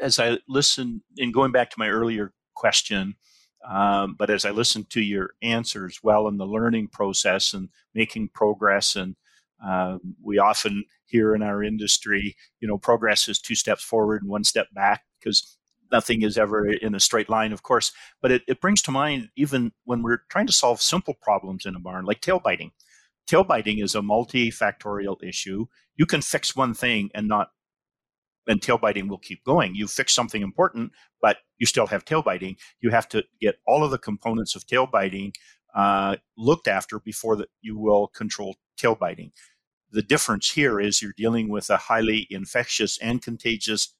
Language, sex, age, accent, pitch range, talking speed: English, male, 50-69, American, 100-115 Hz, 185 wpm